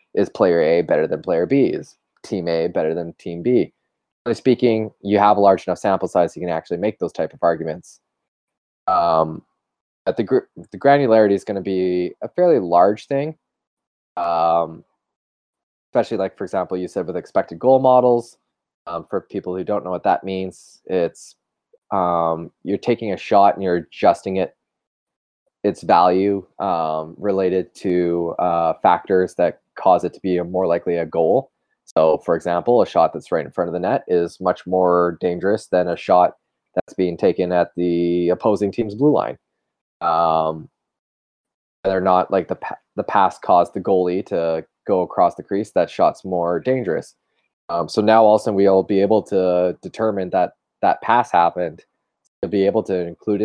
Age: 20-39